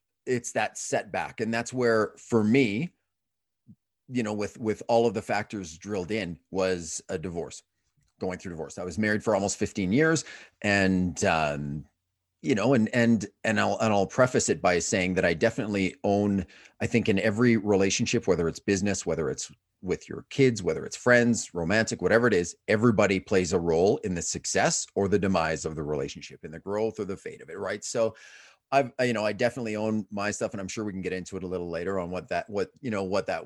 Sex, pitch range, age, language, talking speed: male, 95-115 Hz, 30-49, English, 215 wpm